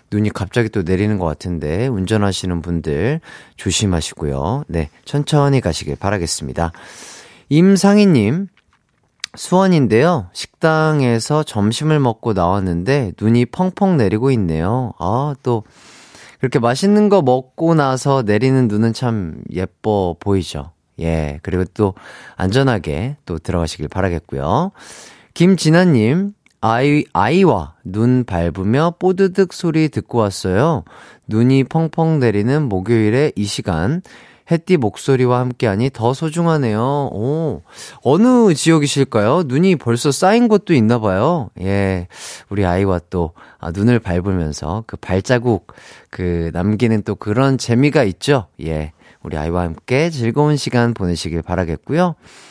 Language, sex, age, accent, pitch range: Korean, male, 30-49, native, 95-150 Hz